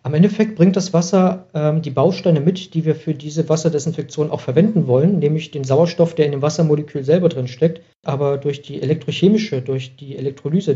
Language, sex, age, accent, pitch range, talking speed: German, male, 40-59, German, 130-165 Hz, 190 wpm